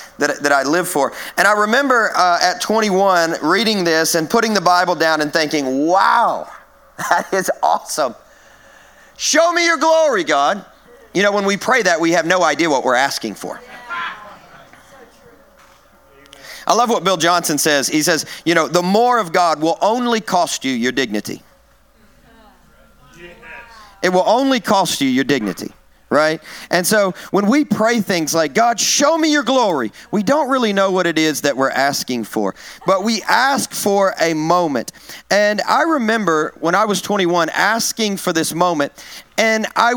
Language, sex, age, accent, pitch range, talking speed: English, male, 40-59, American, 170-235 Hz, 170 wpm